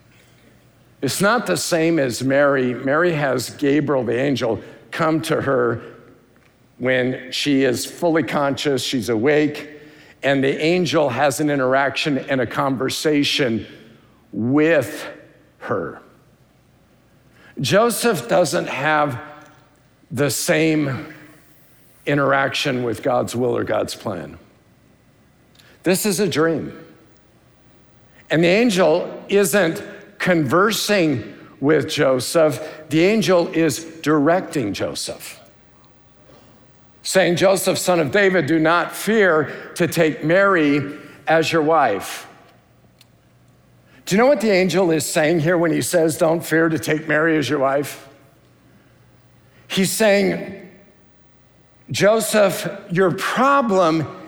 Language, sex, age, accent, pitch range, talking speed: English, male, 50-69, American, 135-180 Hz, 110 wpm